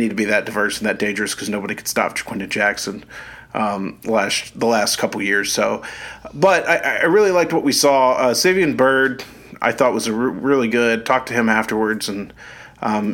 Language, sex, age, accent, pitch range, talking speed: English, male, 40-59, American, 110-135 Hz, 205 wpm